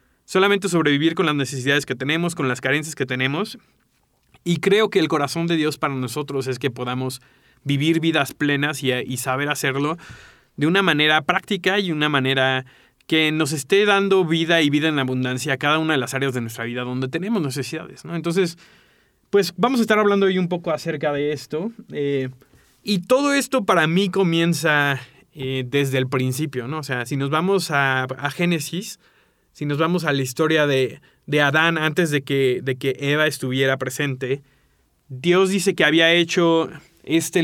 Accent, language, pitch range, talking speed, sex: Mexican, Spanish, 140-175 Hz, 185 wpm, male